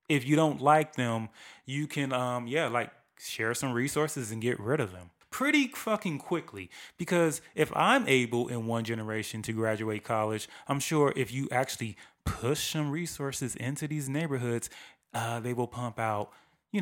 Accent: American